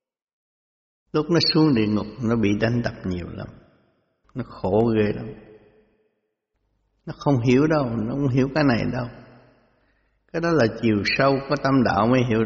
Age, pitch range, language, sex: 60-79, 105-135 Hz, Vietnamese, male